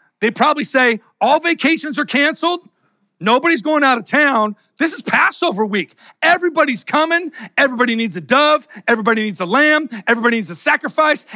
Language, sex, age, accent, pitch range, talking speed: English, male, 40-59, American, 200-265 Hz, 160 wpm